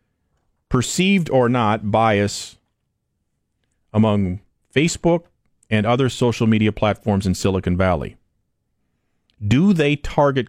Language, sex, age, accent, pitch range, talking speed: English, male, 40-59, American, 100-125 Hz, 95 wpm